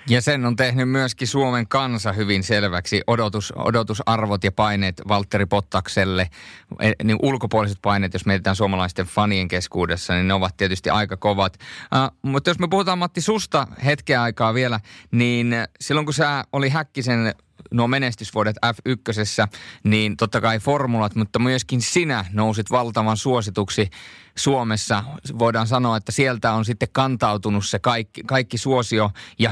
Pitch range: 105-135 Hz